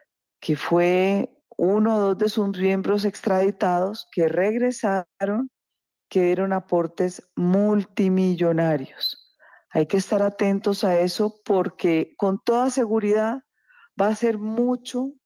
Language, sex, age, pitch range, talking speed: Spanish, female, 40-59, 175-220 Hz, 115 wpm